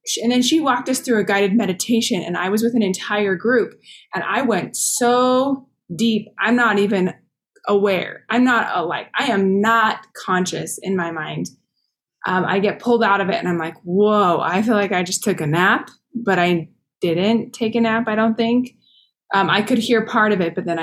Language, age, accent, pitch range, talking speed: English, 20-39, American, 190-235 Hz, 205 wpm